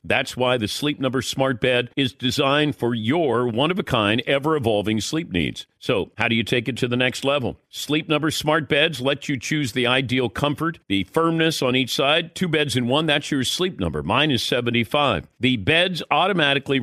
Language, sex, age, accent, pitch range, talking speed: English, male, 50-69, American, 120-155 Hz, 195 wpm